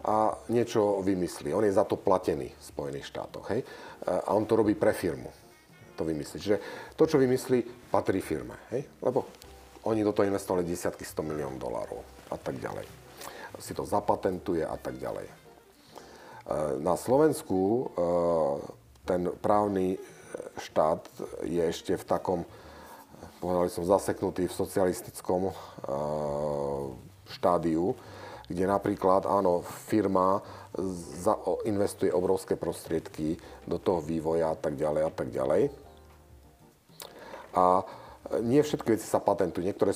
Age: 40-59